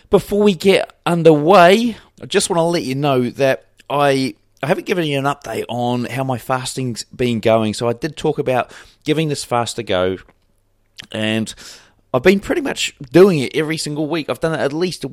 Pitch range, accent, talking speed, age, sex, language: 115-155 Hz, British, 200 wpm, 30-49, male, English